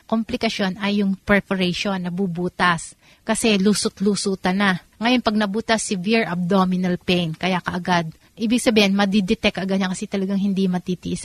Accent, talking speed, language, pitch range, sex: native, 135 wpm, Filipino, 175-210 Hz, female